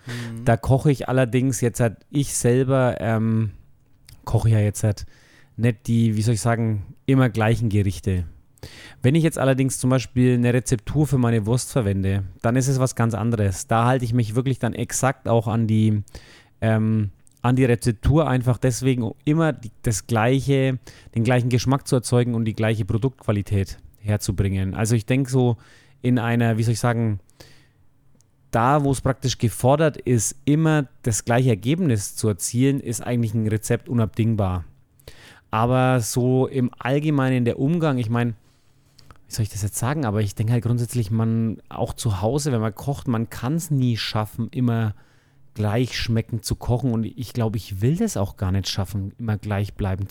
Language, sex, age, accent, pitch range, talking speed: German, male, 30-49, German, 110-130 Hz, 175 wpm